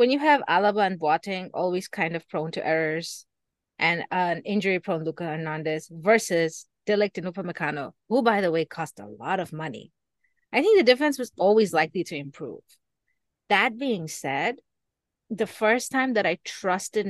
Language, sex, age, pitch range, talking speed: English, female, 30-49, 160-210 Hz, 170 wpm